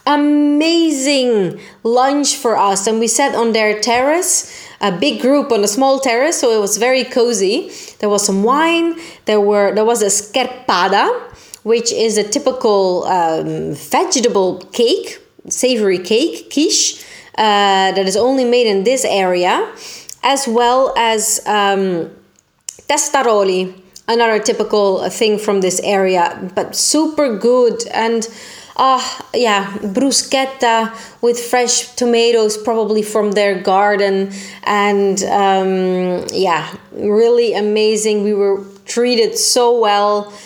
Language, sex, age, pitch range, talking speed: Italian, female, 30-49, 205-265 Hz, 130 wpm